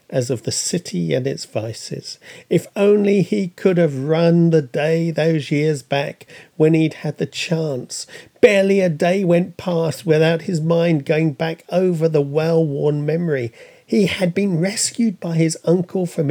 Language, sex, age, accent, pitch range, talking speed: English, male, 50-69, British, 135-175 Hz, 165 wpm